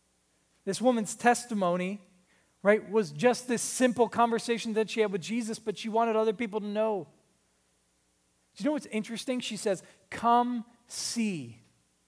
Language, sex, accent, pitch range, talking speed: English, male, American, 185-250 Hz, 150 wpm